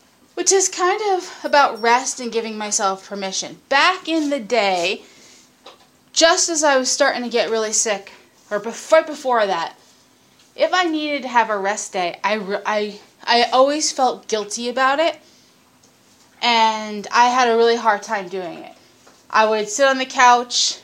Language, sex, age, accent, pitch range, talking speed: English, female, 20-39, American, 220-270 Hz, 165 wpm